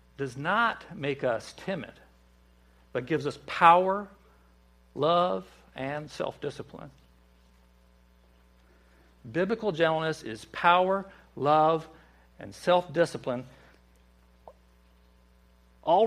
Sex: male